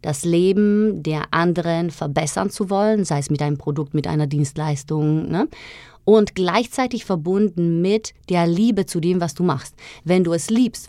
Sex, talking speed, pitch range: female, 170 wpm, 160-195 Hz